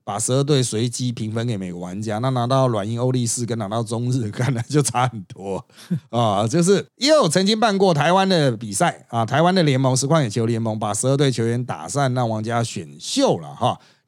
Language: Chinese